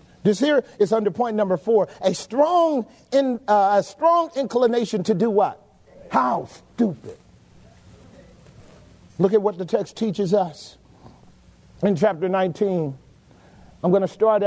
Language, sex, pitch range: English, male, 190-240 Hz